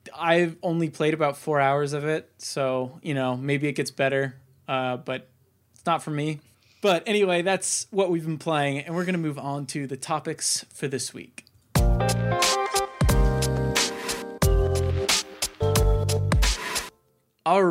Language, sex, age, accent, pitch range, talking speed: English, male, 20-39, American, 130-160 Hz, 135 wpm